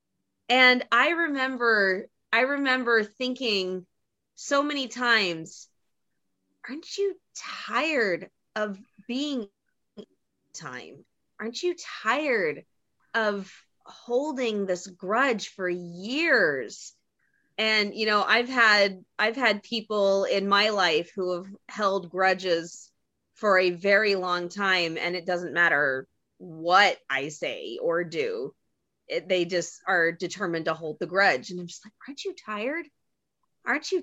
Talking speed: 125 wpm